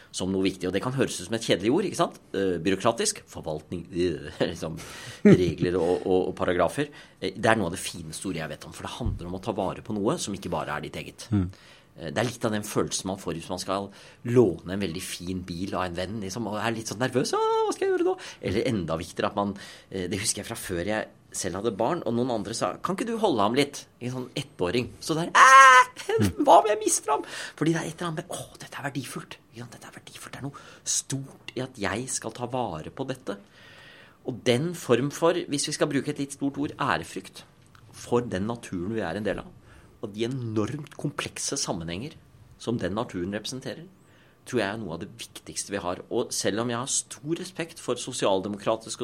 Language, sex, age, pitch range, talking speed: English, male, 30-49, 95-140 Hz, 230 wpm